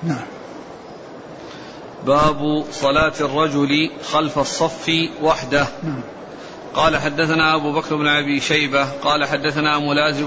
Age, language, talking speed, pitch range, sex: 40-59, Arabic, 95 wpm, 150-165 Hz, male